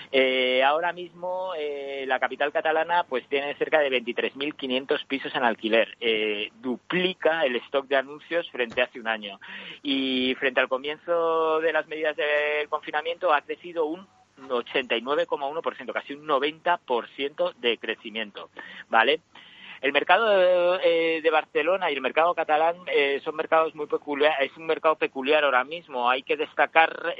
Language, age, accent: Spanish, 50-69, Spanish